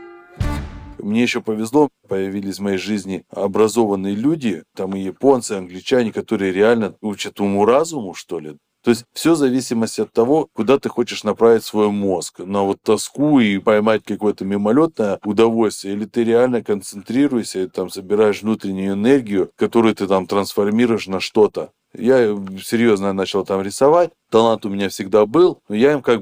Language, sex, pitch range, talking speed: Russian, male, 95-120 Hz, 160 wpm